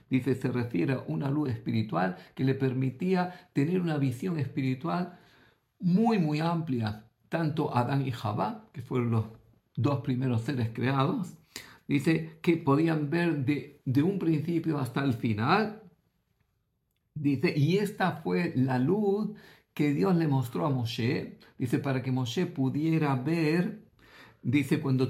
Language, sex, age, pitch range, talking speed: Greek, male, 50-69, 125-160 Hz, 140 wpm